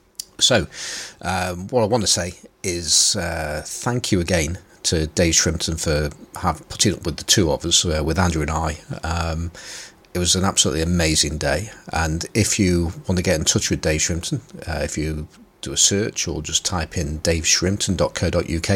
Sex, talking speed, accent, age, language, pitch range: male, 180 wpm, British, 40-59, English, 80-105 Hz